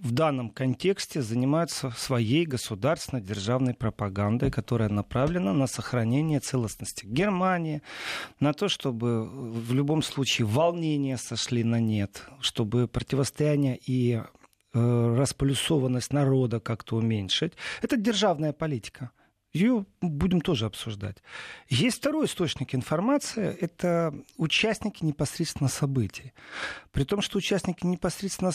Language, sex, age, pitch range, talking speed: Russian, male, 40-59, 125-170 Hz, 105 wpm